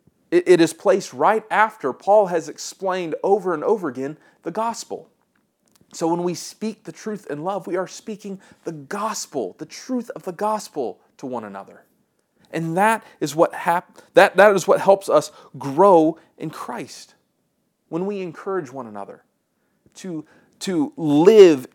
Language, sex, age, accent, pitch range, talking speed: English, male, 30-49, American, 145-210 Hz, 155 wpm